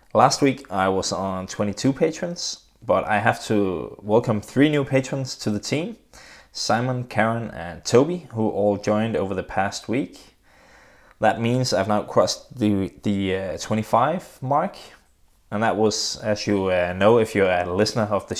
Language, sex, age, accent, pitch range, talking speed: English, male, 20-39, Danish, 95-115 Hz, 170 wpm